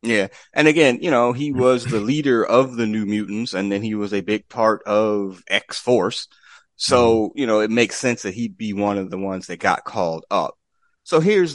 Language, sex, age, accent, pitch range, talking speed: English, male, 30-49, American, 95-115 Hz, 220 wpm